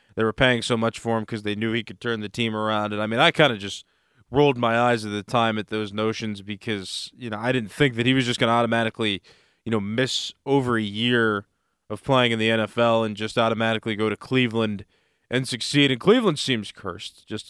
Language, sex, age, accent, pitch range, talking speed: English, male, 20-39, American, 110-140 Hz, 235 wpm